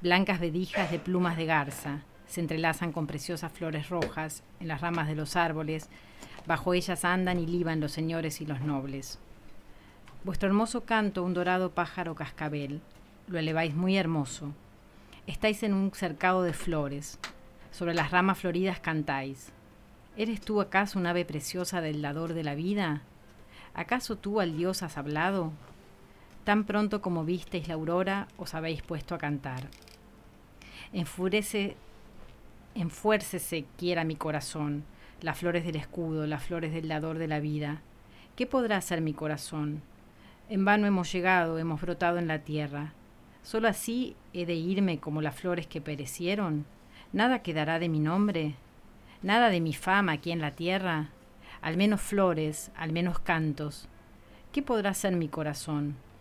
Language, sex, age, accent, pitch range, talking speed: Spanish, female, 40-59, Argentinian, 150-180 Hz, 150 wpm